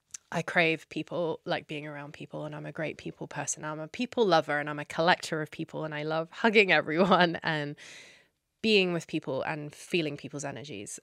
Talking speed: 195 wpm